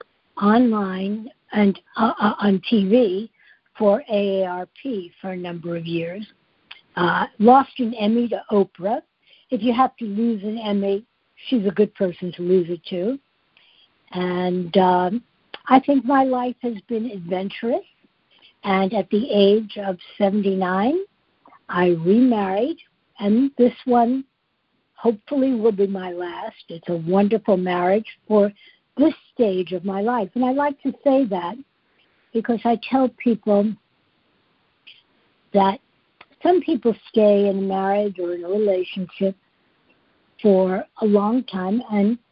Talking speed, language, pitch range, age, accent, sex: 135 wpm, English, 195-245 Hz, 60-79, American, female